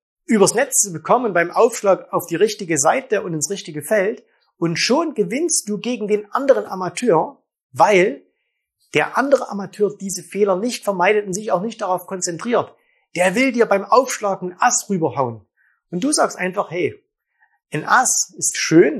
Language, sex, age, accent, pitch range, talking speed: German, male, 30-49, German, 165-225 Hz, 165 wpm